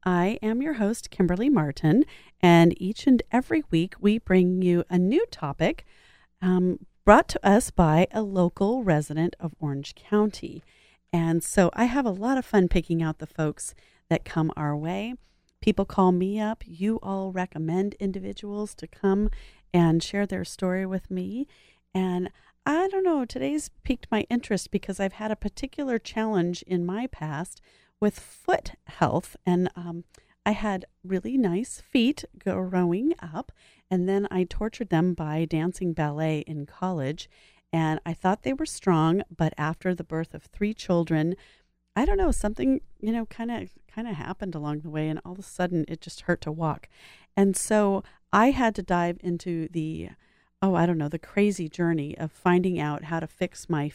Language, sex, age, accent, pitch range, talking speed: English, female, 40-59, American, 165-210 Hz, 175 wpm